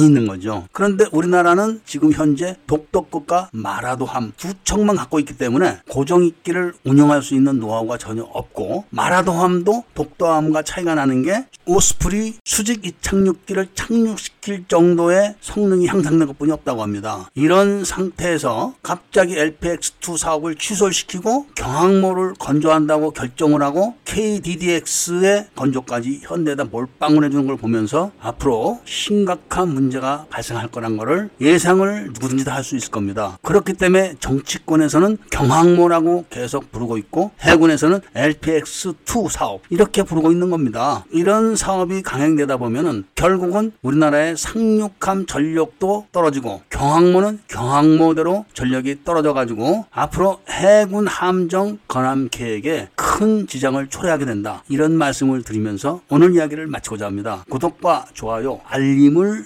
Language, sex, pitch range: Korean, male, 135-185 Hz